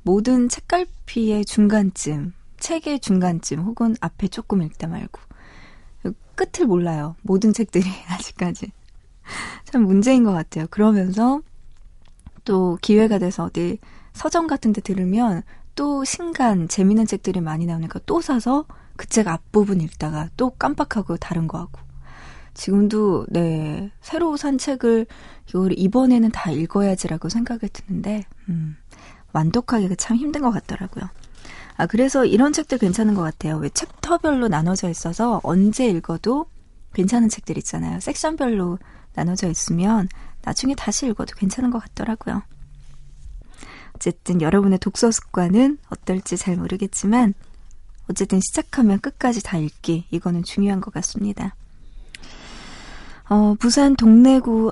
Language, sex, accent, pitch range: Korean, female, native, 175-235 Hz